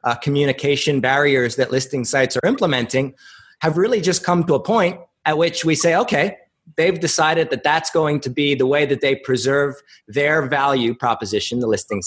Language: English